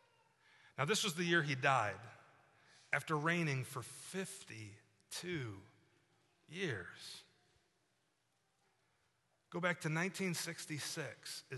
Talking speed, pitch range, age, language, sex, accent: 85 wpm, 125-180 Hz, 30-49, English, male, American